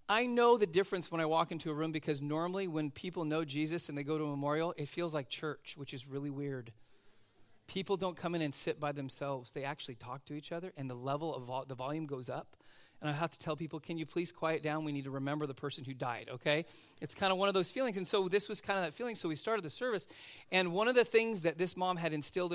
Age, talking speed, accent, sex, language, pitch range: 30-49, 270 wpm, American, male, English, 145-190 Hz